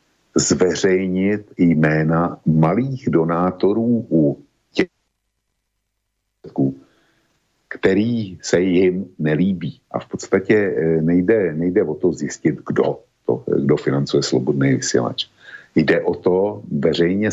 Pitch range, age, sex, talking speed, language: 80-95 Hz, 50-69, male, 95 wpm, Slovak